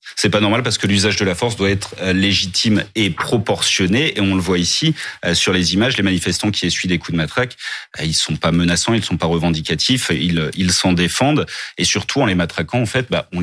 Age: 30-49